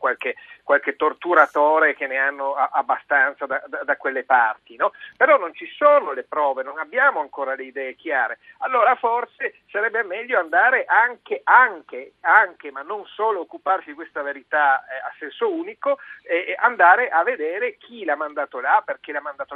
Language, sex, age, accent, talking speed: Italian, male, 50-69, native, 170 wpm